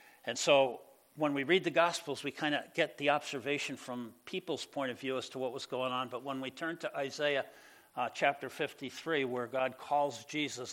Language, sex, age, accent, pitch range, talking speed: English, male, 60-79, American, 125-145 Hz, 205 wpm